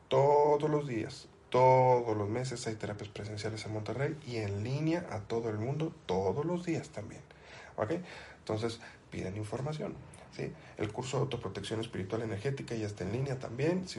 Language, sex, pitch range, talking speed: Spanish, male, 105-135 Hz, 165 wpm